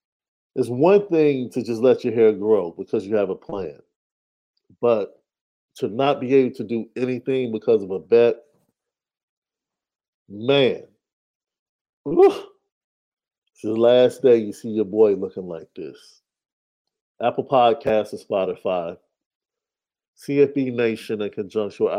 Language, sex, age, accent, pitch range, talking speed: English, male, 50-69, American, 110-155 Hz, 125 wpm